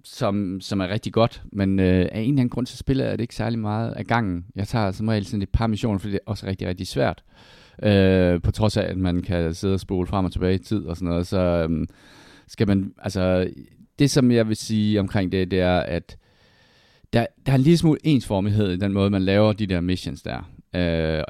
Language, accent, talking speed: Danish, native, 240 wpm